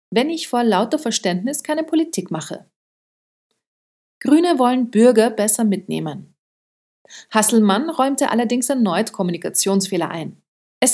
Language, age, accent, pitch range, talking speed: German, 40-59, German, 195-270 Hz, 110 wpm